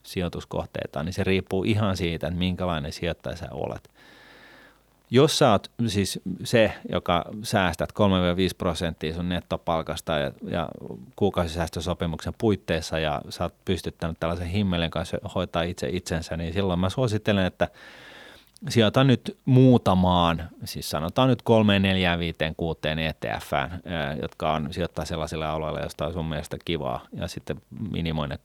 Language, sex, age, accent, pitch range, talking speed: Finnish, male, 30-49, native, 80-100 Hz, 135 wpm